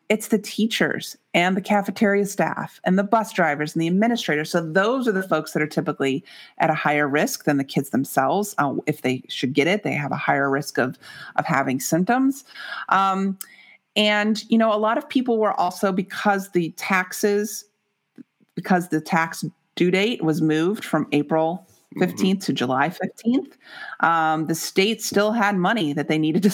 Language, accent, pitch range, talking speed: English, American, 165-220 Hz, 185 wpm